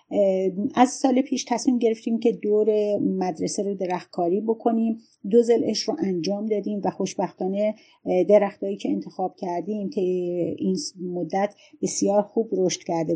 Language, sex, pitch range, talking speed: Persian, female, 175-210 Hz, 130 wpm